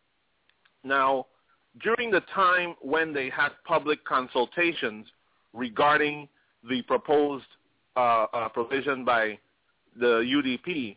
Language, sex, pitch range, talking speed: English, male, 120-150 Hz, 95 wpm